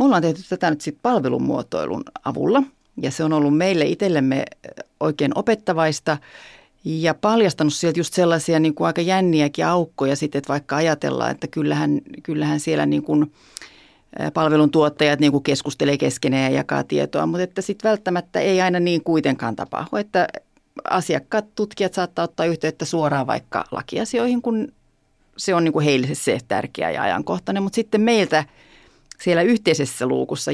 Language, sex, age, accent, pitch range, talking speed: Finnish, female, 40-59, native, 150-205 Hz, 145 wpm